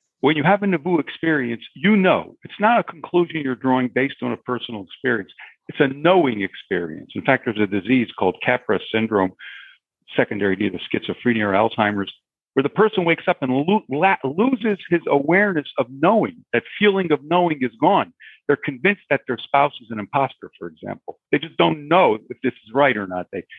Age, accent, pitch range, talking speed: 50-69, American, 125-175 Hz, 185 wpm